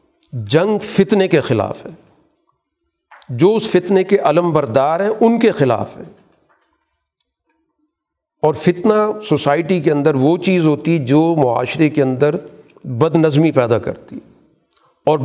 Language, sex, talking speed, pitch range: Urdu, male, 125 wpm, 145-195 Hz